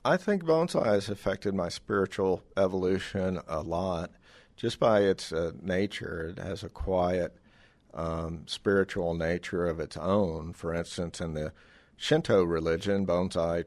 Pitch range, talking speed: 80-95 Hz, 140 wpm